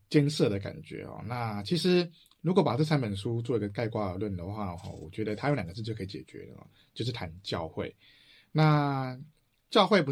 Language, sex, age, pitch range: Chinese, male, 20-39, 95-120 Hz